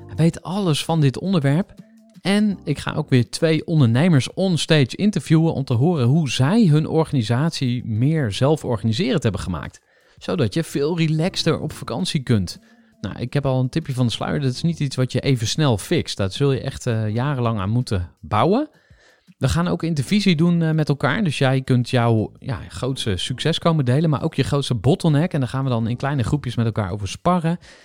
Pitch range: 120-165 Hz